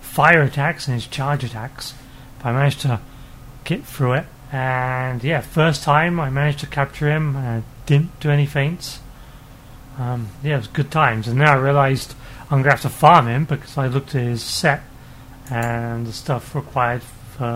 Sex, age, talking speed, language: male, 30-49, 190 wpm, English